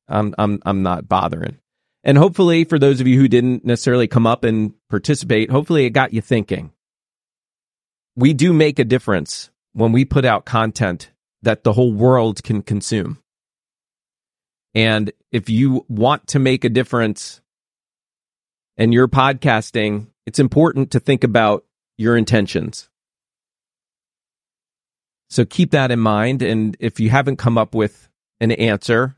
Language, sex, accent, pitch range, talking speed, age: English, male, American, 110-140 Hz, 145 wpm, 40-59